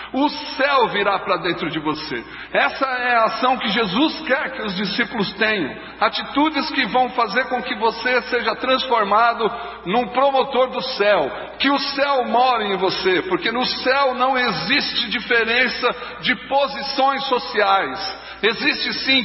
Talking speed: 150 wpm